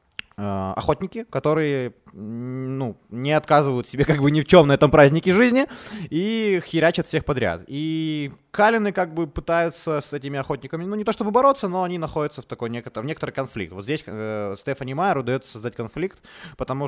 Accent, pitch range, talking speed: native, 130-165 Hz, 175 wpm